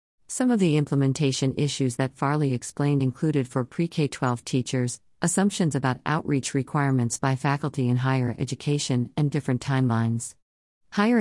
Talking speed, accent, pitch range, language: 135 wpm, American, 130-150 Hz, English